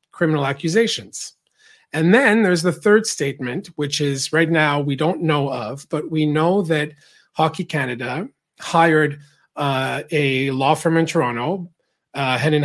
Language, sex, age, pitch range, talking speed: English, male, 40-59, 140-170 Hz, 145 wpm